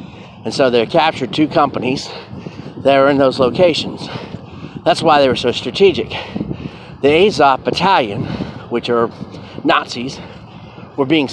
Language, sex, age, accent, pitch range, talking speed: English, male, 30-49, American, 110-135 Hz, 130 wpm